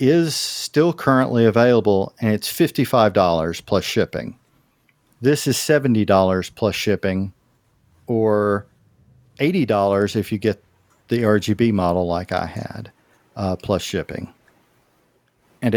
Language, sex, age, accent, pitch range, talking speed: English, male, 50-69, American, 100-125 Hz, 110 wpm